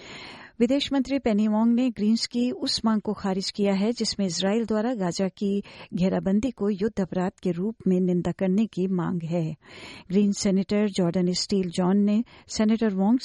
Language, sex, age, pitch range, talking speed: Hindi, female, 50-69, 180-220 Hz, 170 wpm